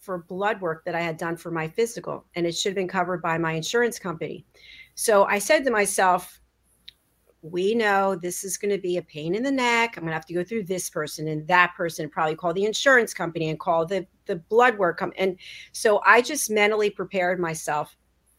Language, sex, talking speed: English, female, 220 wpm